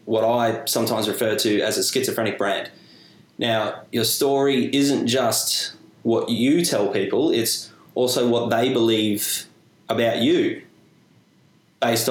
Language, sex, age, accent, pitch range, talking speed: English, male, 20-39, Australian, 110-130 Hz, 130 wpm